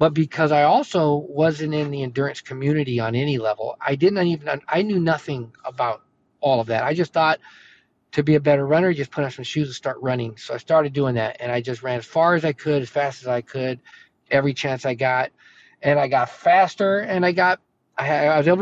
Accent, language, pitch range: American, English, 135-175 Hz